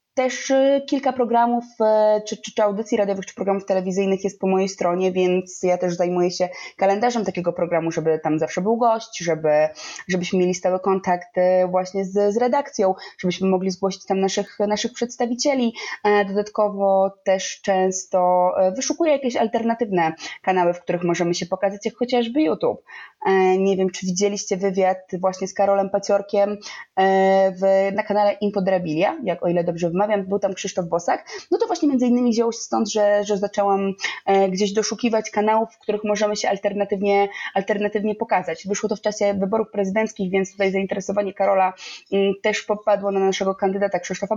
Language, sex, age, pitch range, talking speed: Polish, female, 20-39, 185-215 Hz, 160 wpm